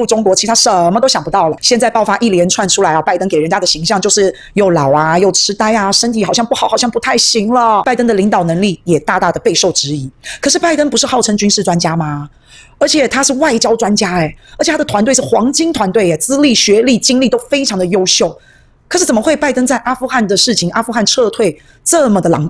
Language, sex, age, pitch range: Chinese, female, 30-49, 180-235 Hz